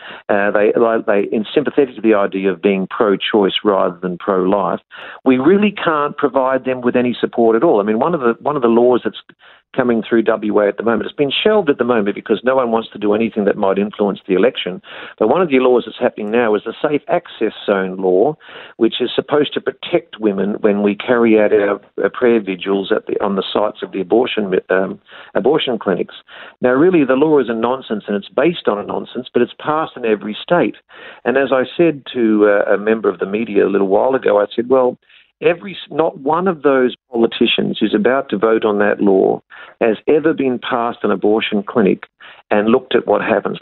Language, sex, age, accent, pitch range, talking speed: English, male, 50-69, Australian, 105-130 Hz, 215 wpm